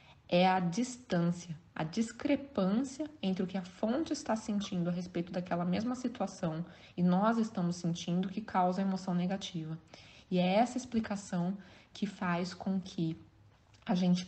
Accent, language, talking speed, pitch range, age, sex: Brazilian, Portuguese, 150 wpm, 175-200 Hz, 20-39, female